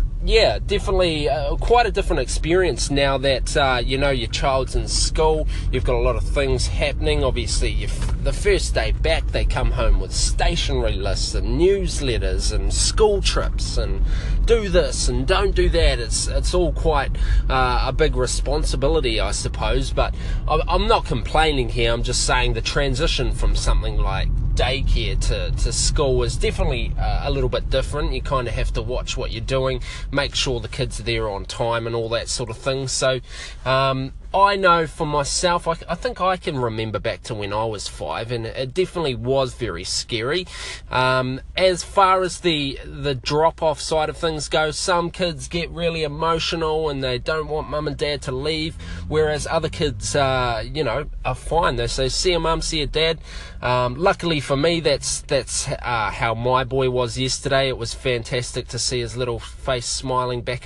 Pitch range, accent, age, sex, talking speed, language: 125-160 Hz, Australian, 20-39, male, 190 wpm, English